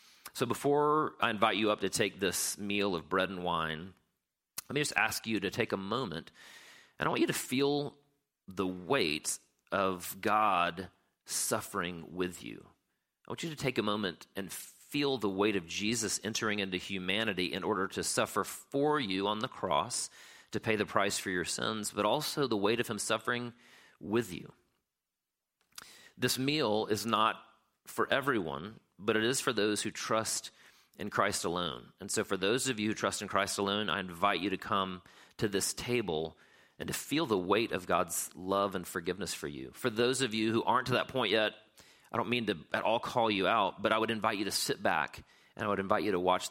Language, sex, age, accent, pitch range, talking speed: English, male, 40-59, American, 90-115 Hz, 205 wpm